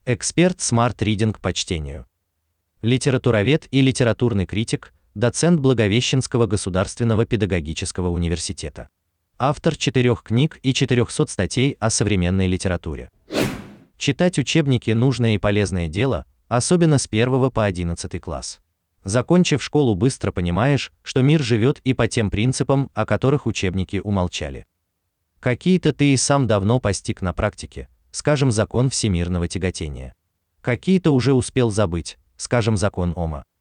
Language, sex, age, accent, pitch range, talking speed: Russian, male, 30-49, native, 90-130 Hz, 120 wpm